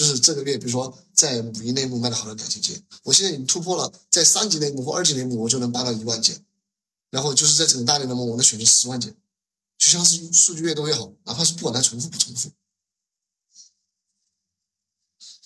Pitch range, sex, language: 120-165 Hz, male, Chinese